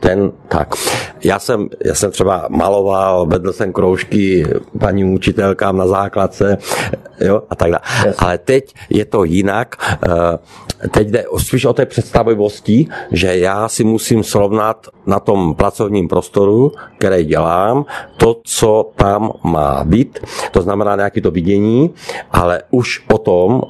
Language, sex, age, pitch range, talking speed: Czech, male, 50-69, 95-115 Hz, 135 wpm